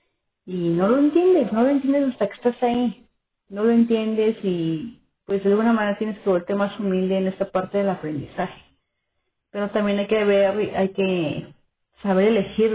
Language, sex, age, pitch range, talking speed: Spanish, female, 30-49, 185-230 Hz, 180 wpm